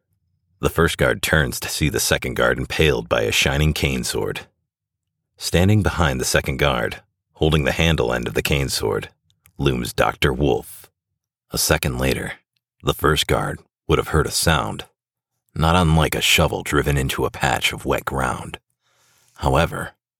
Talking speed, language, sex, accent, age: 160 wpm, English, male, American, 40-59